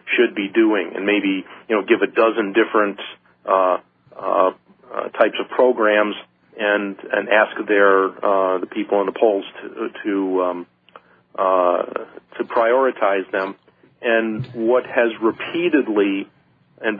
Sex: male